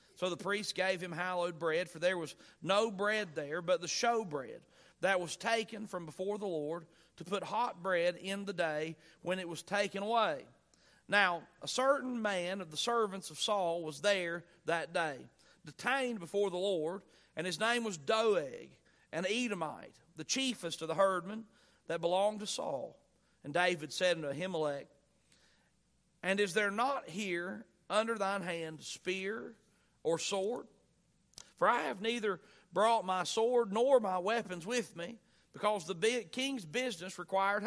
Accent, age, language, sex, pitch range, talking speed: American, 40-59, English, male, 175-215 Hz, 165 wpm